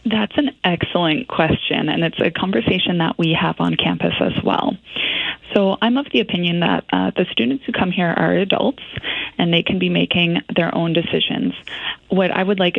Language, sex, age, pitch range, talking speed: English, female, 20-39, 165-200 Hz, 190 wpm